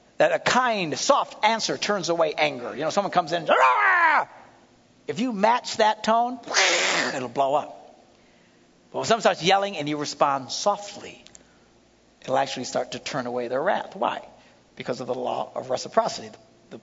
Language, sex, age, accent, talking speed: English, male, 60-79, American, 165 wpm